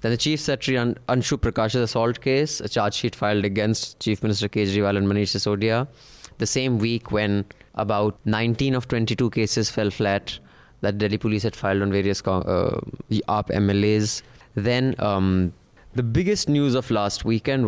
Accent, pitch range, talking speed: Indian, 100-120 Hz, 165 wpm